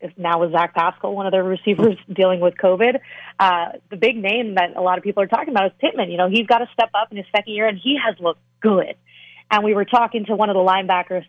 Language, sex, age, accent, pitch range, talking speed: English, female, 30-49, American, 185-215 Hz, 270 wpm